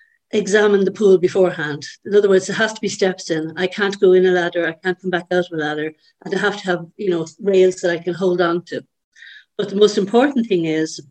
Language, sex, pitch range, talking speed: English, female, 170-195 Hz, 255 wpm